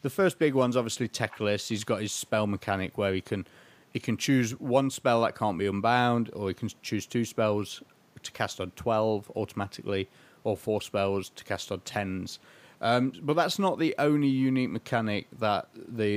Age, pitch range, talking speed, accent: 30-49, 110-140 Hz, 190 wpm, British